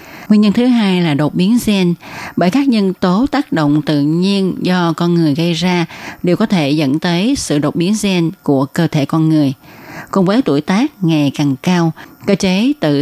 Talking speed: 210 wpm